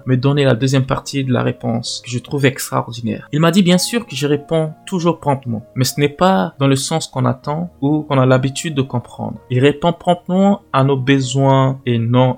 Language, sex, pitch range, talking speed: French, male, 120-155 Hz, 220 wpm